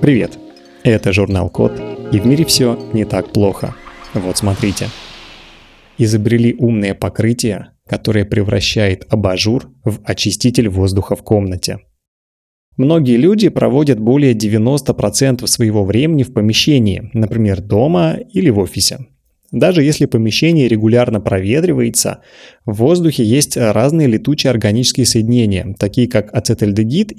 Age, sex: 20-39, male